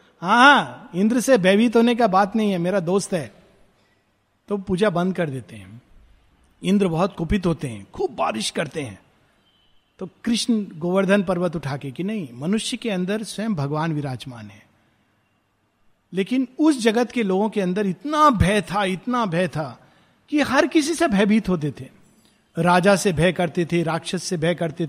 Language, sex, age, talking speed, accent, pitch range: Hindi, male, 50-69, 170 wpm, native, 165-225 Hz